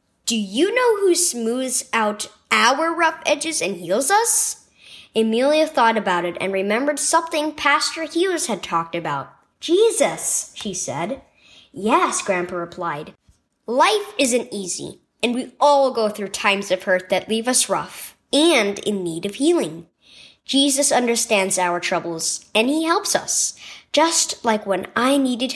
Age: 10-29